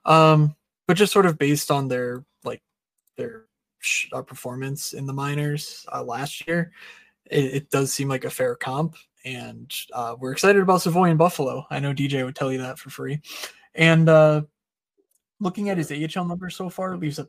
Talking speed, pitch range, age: 190 wpm, 130-165 Hz, 20-39